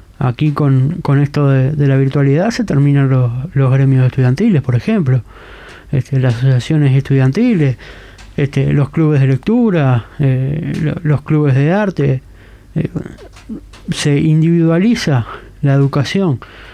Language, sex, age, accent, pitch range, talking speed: Spanish, male, 20-39, Argentinian, 130-155 Hz, 125 wpm